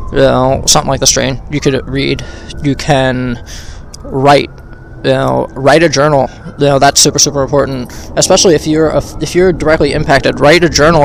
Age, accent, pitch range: 20-39, American, 120-150 Hz